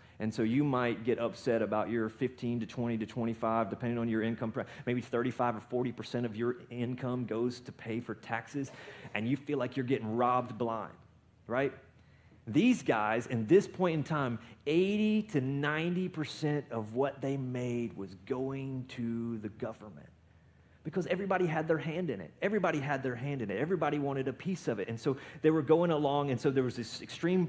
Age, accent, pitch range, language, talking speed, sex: 30-49, American, 120-160 Hz, English, 190 wpm, male